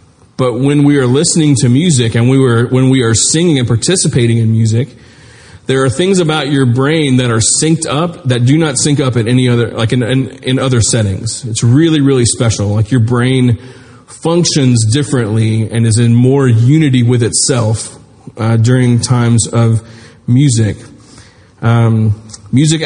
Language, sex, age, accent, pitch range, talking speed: English, male, 30-49, American, 115-135 Hz, 170 wpm